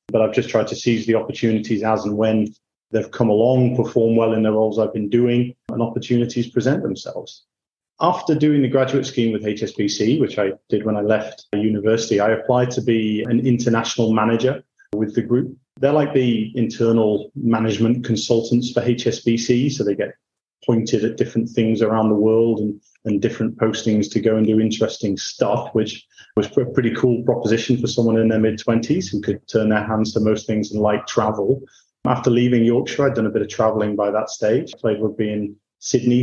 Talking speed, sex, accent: 195 wpm, male, British